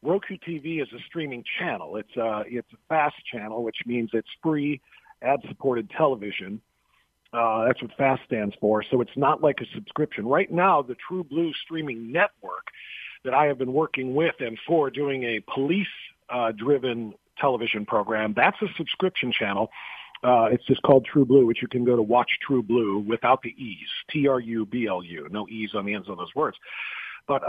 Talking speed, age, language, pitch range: 180 wpm, 40-59, English, 115-150 Hz